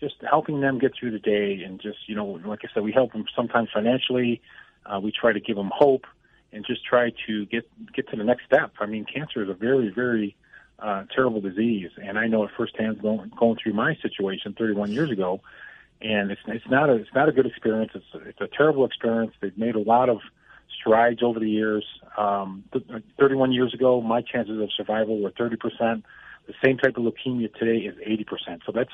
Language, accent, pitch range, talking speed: English, American, 110-135 Hz, 215 wpm